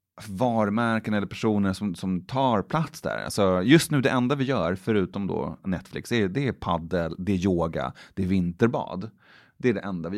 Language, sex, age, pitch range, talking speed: English, male, 30-49, 95-135 Hz, 190 wpm